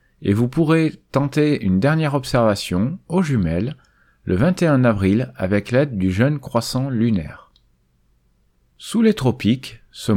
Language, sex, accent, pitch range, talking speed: French, male, French, 100-150 Hz, 130 wpm